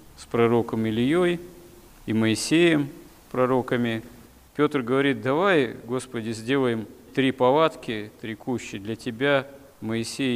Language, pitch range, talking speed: Russian, 120-140 Hz, 105 wpm